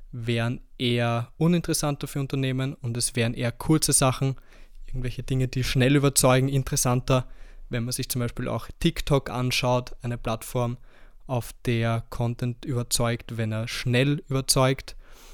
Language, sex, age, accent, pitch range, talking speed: German, male, 20-39, German, 120-135 Hz, 135 wpm